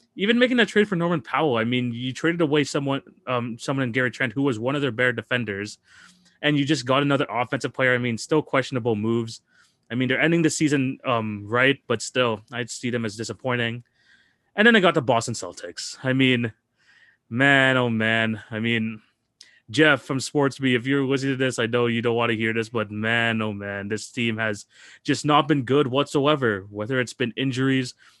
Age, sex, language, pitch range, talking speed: 20-39, male, English, 115-140 Hz, 210 wpm